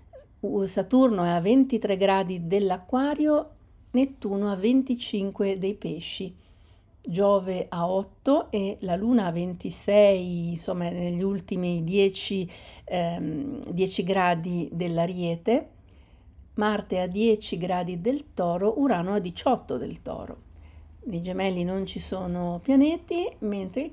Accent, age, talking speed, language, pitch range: native, 50-69, 115 wpm, Italian, 175-220 Hz